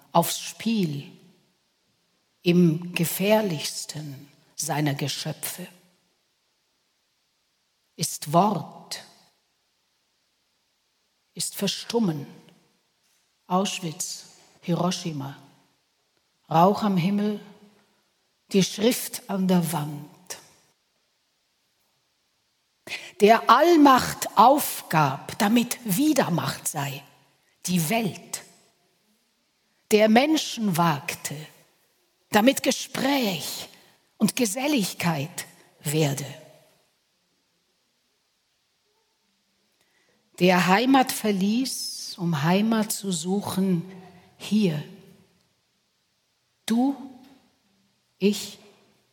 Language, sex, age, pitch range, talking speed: German, female, 60-79, 170-220 Hz, 55 wpm